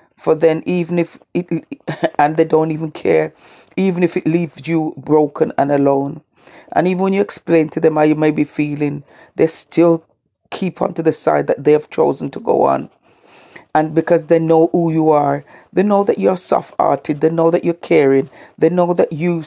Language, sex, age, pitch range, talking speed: English, female, 40-59, 150-170 Hz, 205 wpm